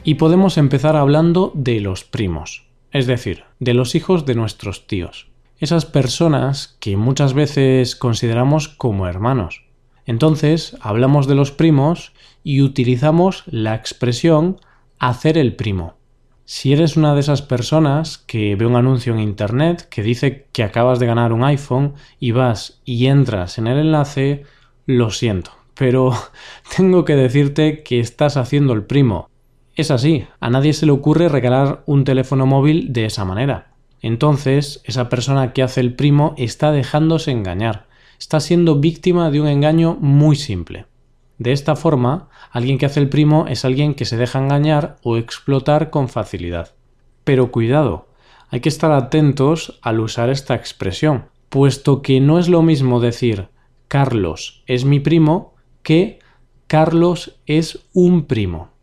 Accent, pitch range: Spanish, 120-150 Hz